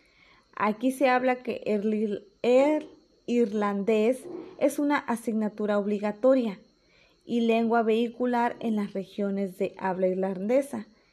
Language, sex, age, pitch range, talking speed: Spanish, female, 20-39, 200-245 Hz, 110 wpm